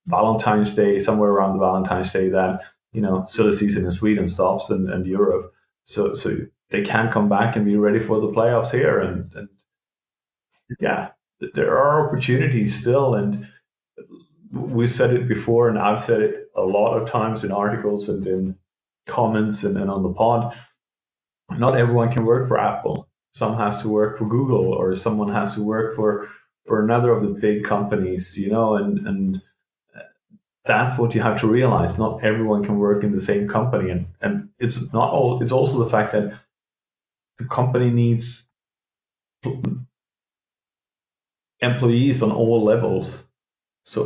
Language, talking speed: English, 165 wpm